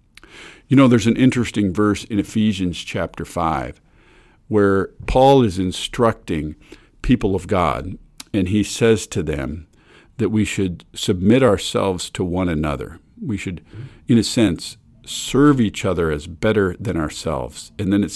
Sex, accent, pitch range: male, American, 90-120 Hz